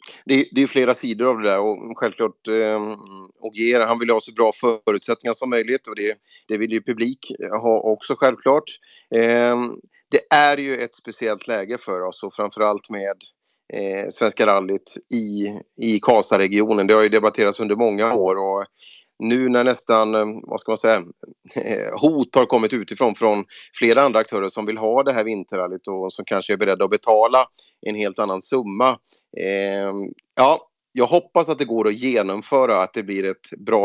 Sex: male